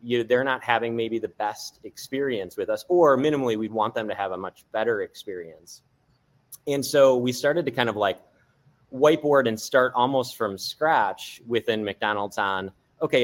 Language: English